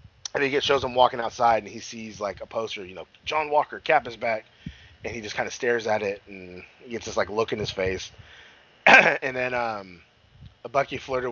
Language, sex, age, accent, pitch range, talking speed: English, male, 30-49, American, 95-130 Hz, 230 wpm